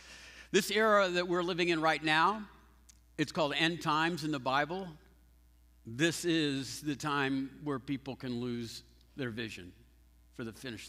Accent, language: American, English